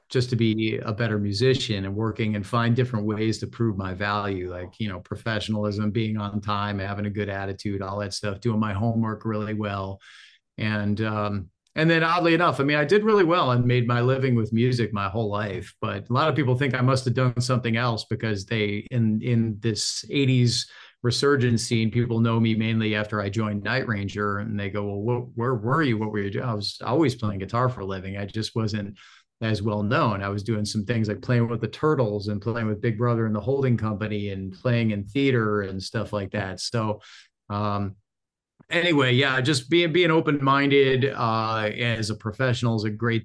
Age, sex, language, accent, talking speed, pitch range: 40-59, male, English, American, 210 wpm, 105-125 Hz